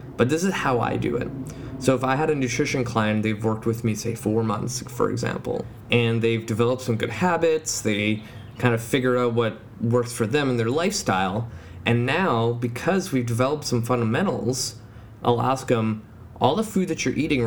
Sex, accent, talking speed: male, American, 195 wpm